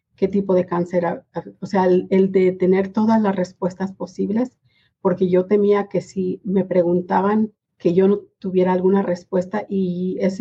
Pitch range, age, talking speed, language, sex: 175-195 Hz, 40-59, 165 wpm, Spanish, female